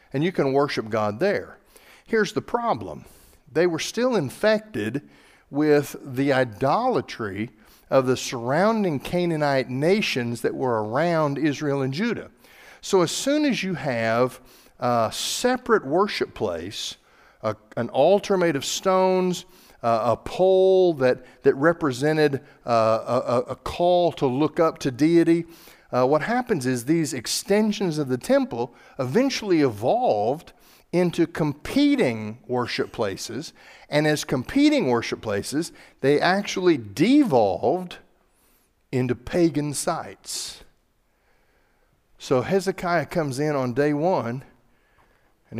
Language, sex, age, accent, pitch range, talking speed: English, male, 50-69, American, 130-180 Hz, 120 wpm